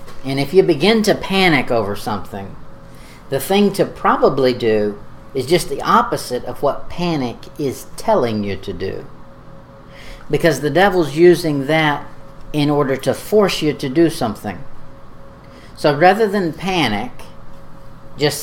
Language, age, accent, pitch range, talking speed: English, 50-69, American, 115-150 Hz, 140 wpm